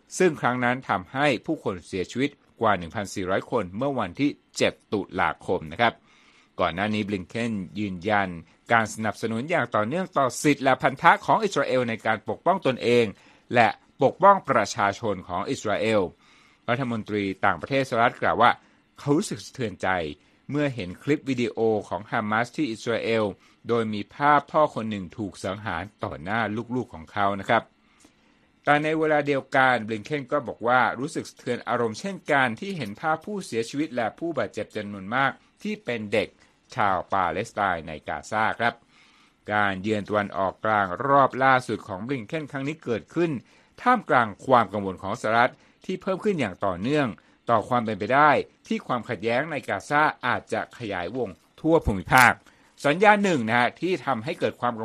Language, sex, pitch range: Thai, male, 105-145 Hz